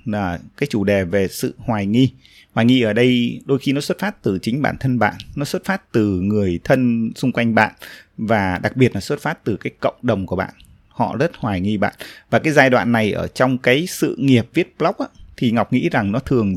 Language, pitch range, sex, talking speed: Vietnamese, 105-140 Hz, male, 245 wpm